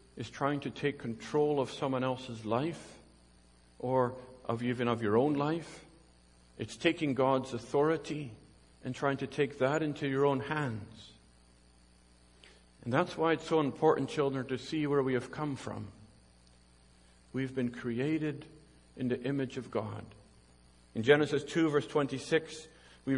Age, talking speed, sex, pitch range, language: 50-69, 150 wpm, male, 110-145 Hz, English